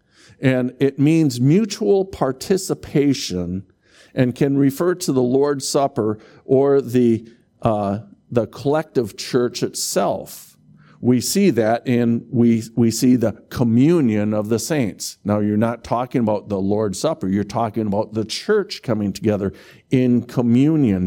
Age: 50-69